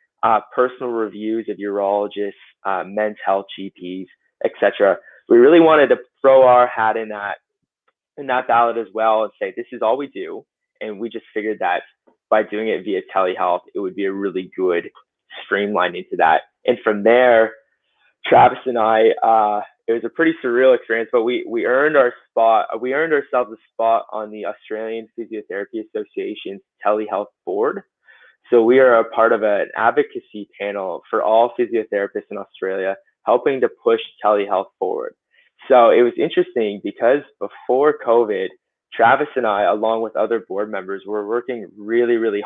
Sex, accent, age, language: male, American, 20-39, English